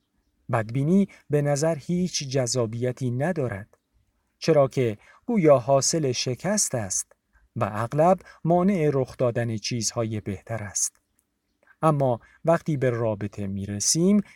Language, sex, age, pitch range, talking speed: Persian, male, 50-69, 115-165 Hz, 110 wpm